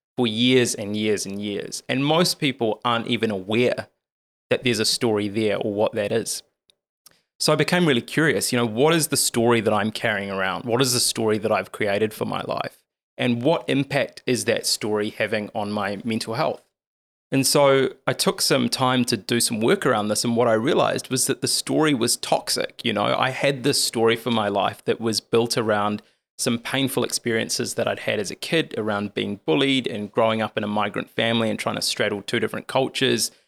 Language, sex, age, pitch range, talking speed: English, male, 20-39, 110-135 Hz, 210 wpm